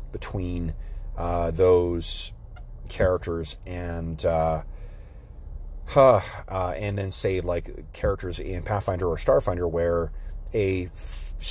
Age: 30-49